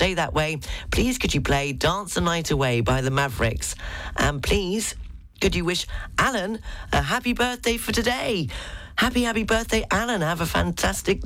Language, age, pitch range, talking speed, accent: English, 40-59, 140-210 Hz, 165 wpm, British